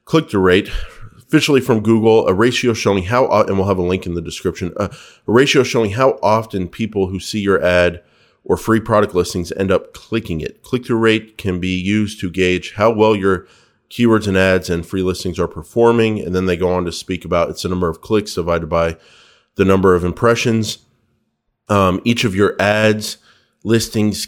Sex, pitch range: male, 90-110 Hz